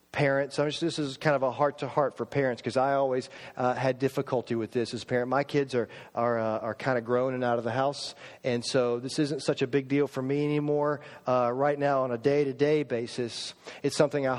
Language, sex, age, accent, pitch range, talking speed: English, male, 40-59, American, 130-185 Hz, 240 wpm